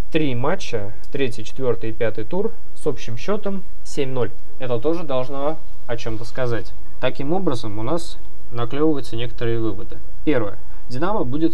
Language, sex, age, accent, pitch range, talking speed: Russian, male, 20-39, native, 115-145 Hz, 140 wpm